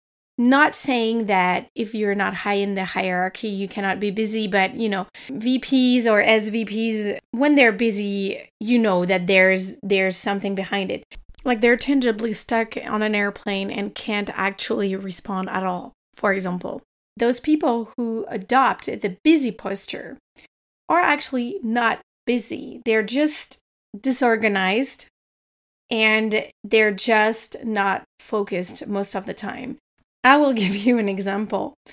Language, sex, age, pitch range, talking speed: English, female, 30-49, 205-255 Hz, 140 wpm